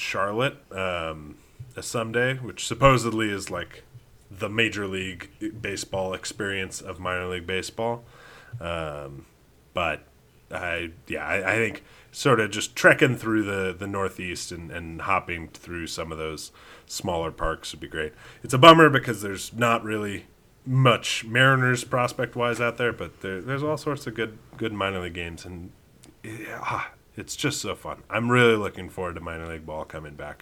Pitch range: 90-120 Hz